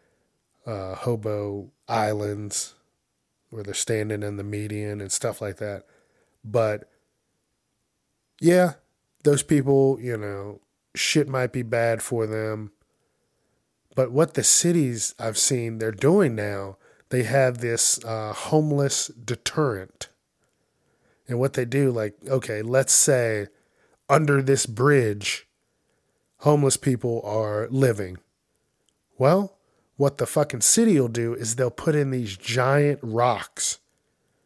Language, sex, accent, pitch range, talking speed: English, male, American, 105-135 Hz, 120 wpm